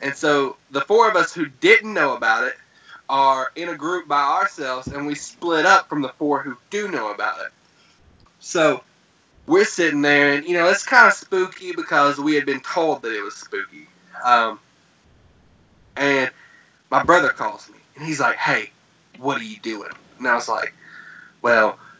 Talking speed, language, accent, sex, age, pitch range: 185 wpm, English, American, male, 20-39, 135-170 Hz